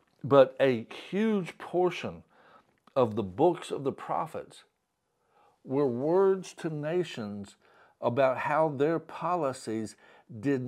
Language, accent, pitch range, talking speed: English, American, 120-165 Hz, 105 wpm